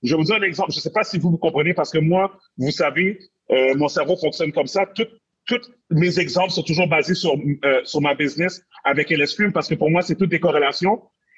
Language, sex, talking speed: English, male, 250 wpm